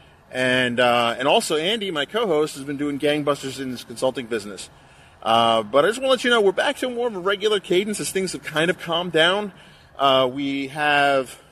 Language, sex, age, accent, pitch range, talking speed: English, male, 30-49, American, 130-175 Hz, 220 wpm